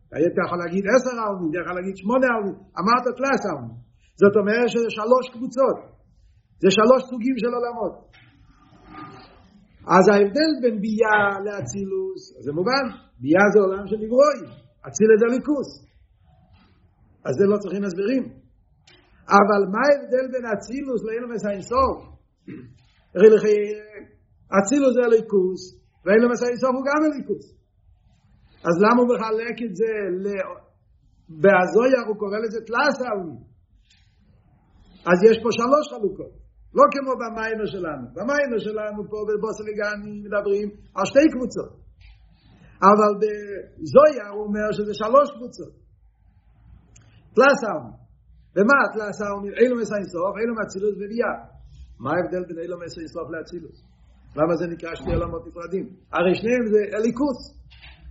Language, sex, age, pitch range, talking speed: Hebrew, male, 50-69, 175-235 Hz, 115 wpm